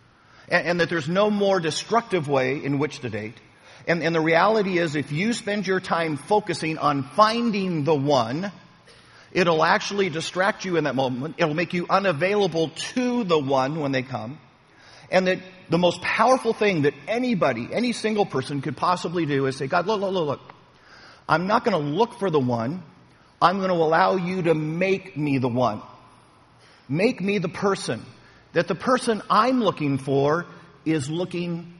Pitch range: 140-185 Hz